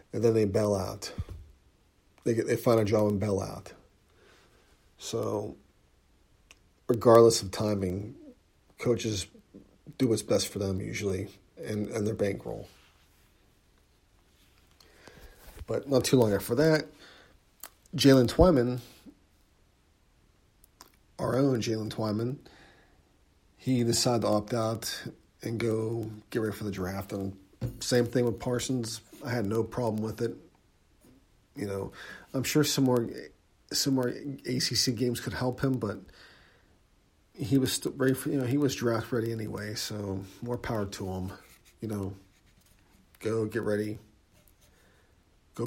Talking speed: 130 wpm